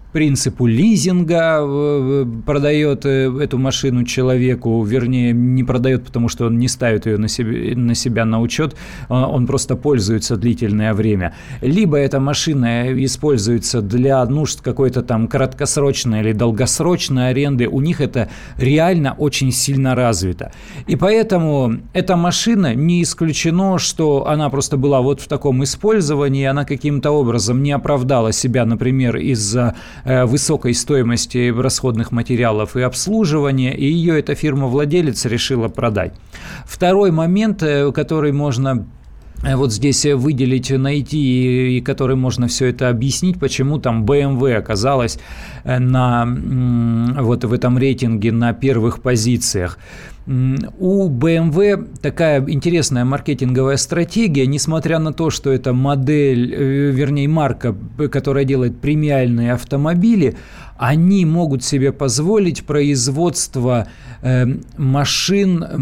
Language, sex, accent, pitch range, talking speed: Russian, male, native, 120-145 Hz, 115 wpm